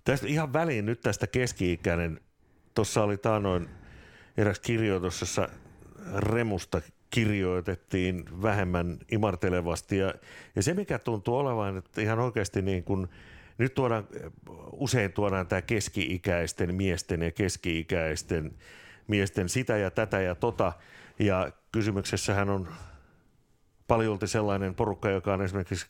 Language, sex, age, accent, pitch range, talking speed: Finnish, male, 60-79, native, 95-110 Hz, 115 wpm